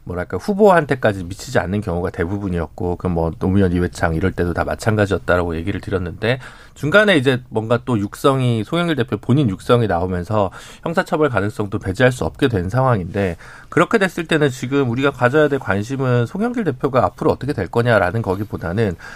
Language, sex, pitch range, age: Korean, male, 105-160 Hz, 40-59